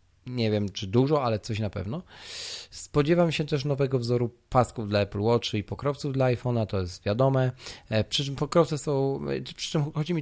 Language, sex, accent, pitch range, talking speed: Polish, male, native, 100-140 Hz, 195 wpm